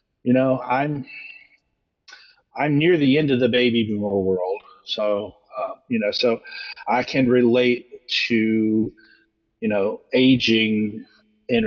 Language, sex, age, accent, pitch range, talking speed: English, male, 50-69, American, 110-130 Hz, 130 wpm